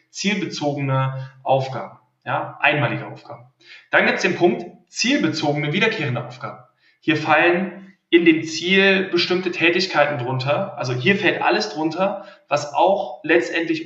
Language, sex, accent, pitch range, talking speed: German, male, German, 130-180 Hz, 125 wpm